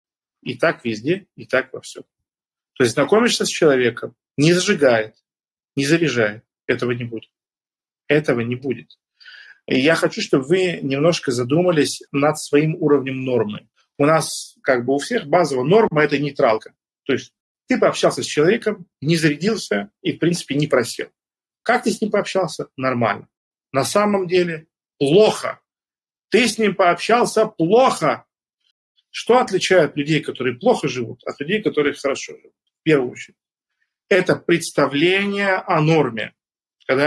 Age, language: 40-59, Russian